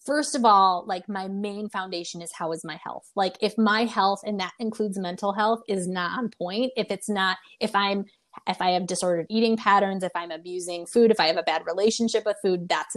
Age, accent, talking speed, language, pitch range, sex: 20-39, American, 225 wpm, English, 185-225 Hz, female